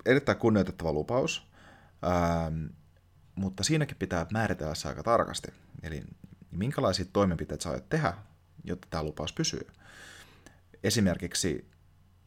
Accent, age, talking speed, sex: native, 30-49, 110 wpm, male